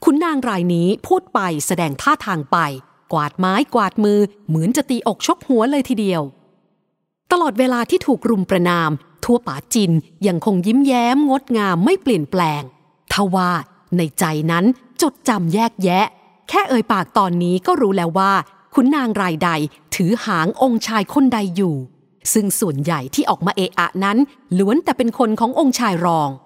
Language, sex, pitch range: English, female, 175-255 Hz